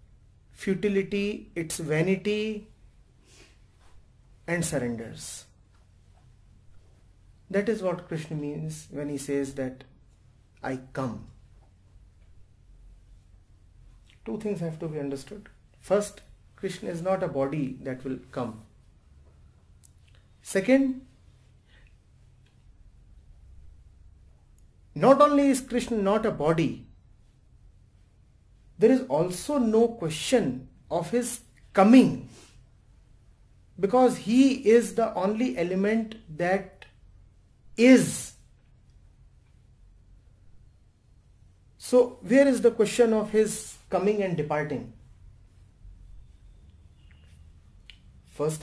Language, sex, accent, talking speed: English, male, Indian, 80 wpm